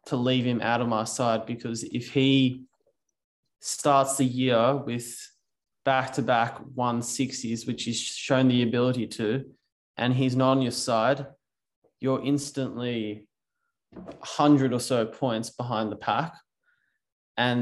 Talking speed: 130 wpm